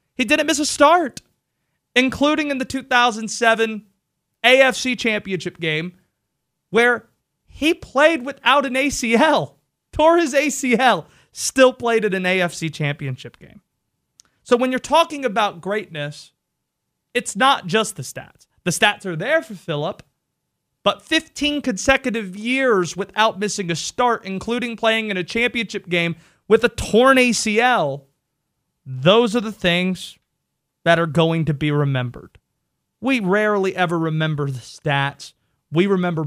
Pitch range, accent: 155-240 Hz, American